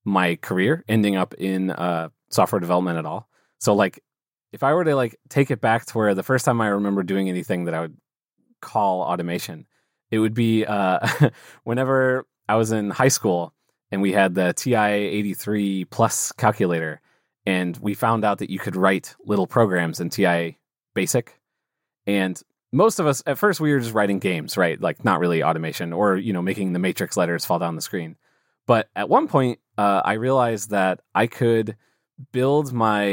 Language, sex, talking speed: English, male, 185 wpm